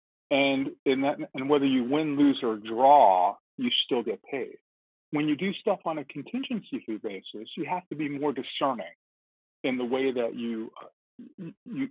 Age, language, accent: 40-59, English, American